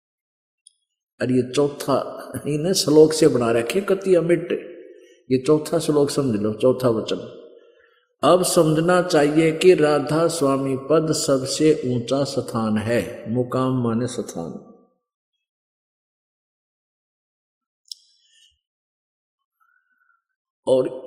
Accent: native